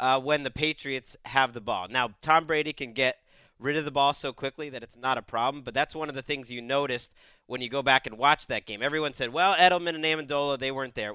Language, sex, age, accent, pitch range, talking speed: English, male, 30-49, American, 125-155 Hz, 260 wpm